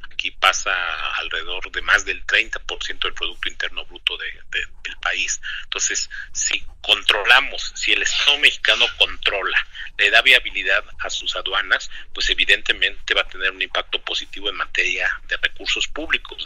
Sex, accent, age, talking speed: male, Mexican, 50-69, 145 wpm